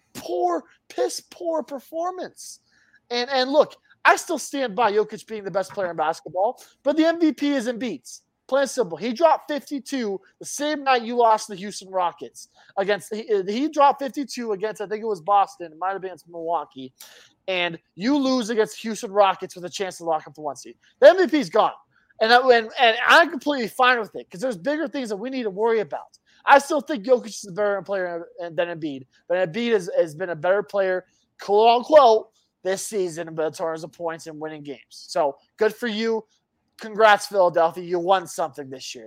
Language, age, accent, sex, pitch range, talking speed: English, 20-39, American, male, 180-255 Hz, 205 wpm